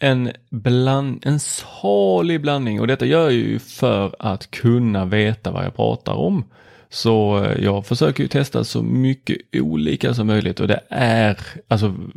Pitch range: 100-125 Hz